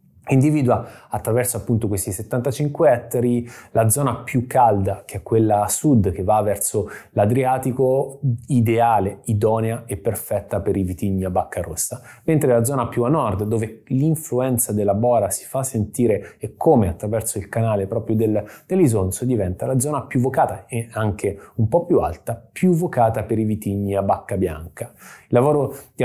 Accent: native